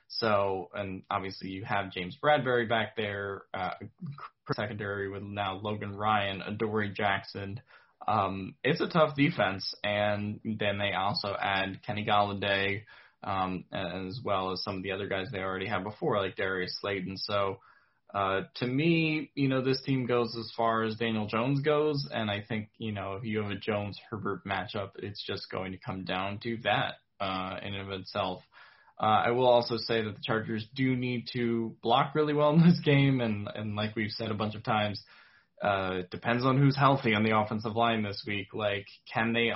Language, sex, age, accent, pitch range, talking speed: English, male, 10-29, American, 100-120 Hz, 190 wpm